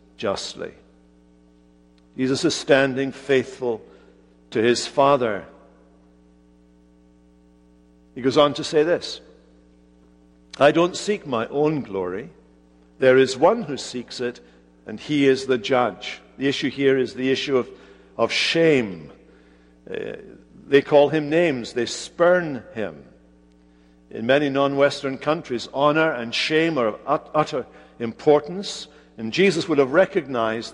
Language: English